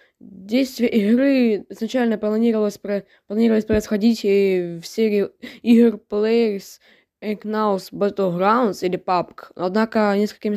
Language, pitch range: Russian, 185-230 Hz